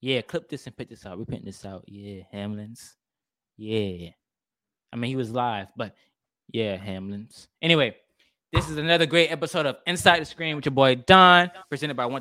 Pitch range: 115-150 Hz